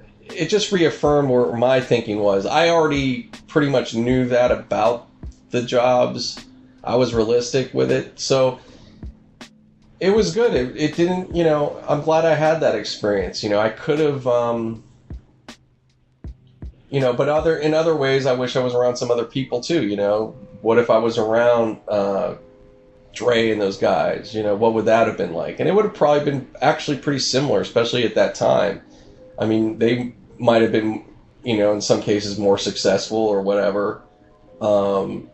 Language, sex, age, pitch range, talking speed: English, male, 30-49, 105-130 Hz, 180 wpm